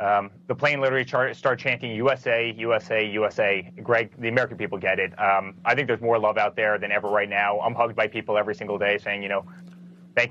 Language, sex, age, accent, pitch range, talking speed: English, male, 30-49, American, 105-155 Hz, 225 wpm